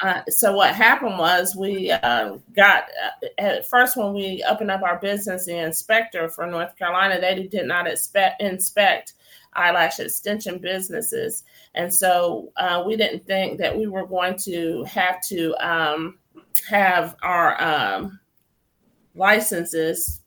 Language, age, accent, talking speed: English, 30-49, American, 140 wpm